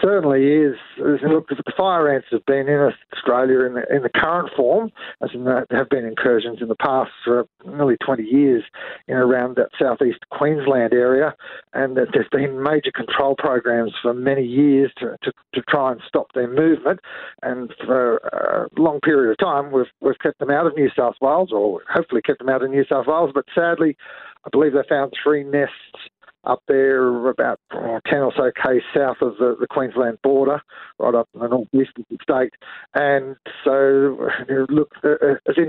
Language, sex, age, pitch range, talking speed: English, male, 50-69, 130-150 Hz, 185 wpm